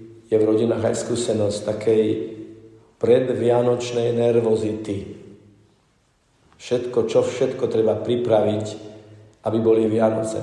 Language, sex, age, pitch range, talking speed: Slovak, male, 50-69, 105-125 Hz, 90 wpm